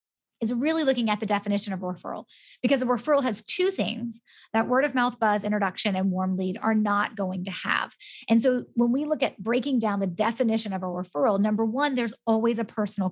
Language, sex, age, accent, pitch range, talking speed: English, female, 30-49, American, 200-250 Hz, 220 wpm